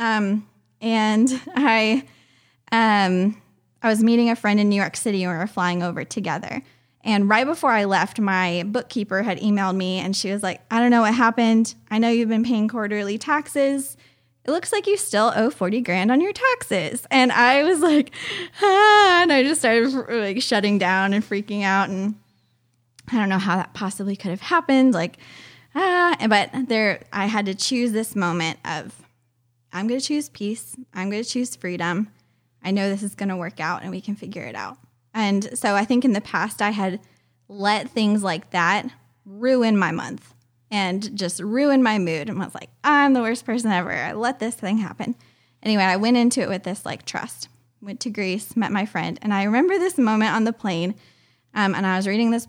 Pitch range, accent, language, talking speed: 185-235 Hz, American, English, 205 wpm